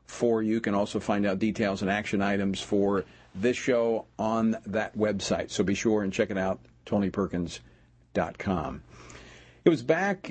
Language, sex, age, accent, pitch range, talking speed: English, male, 50-69, American, 95-130 Hz, 165 wpm